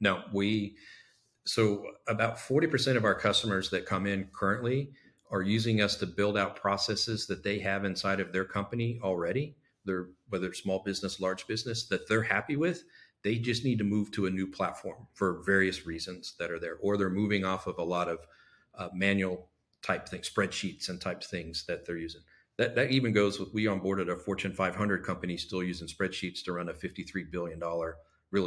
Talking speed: 195 wpm